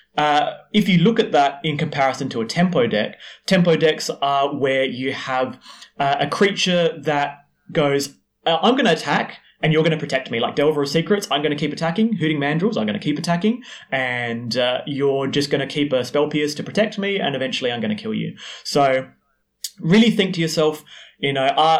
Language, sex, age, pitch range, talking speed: English, male, 30-49, 135-170 Hz, 210 wpm